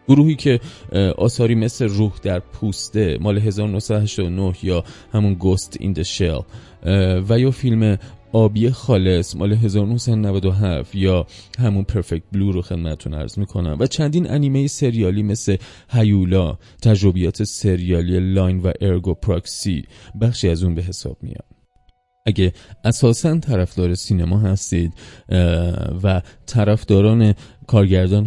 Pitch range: 90-110 Hz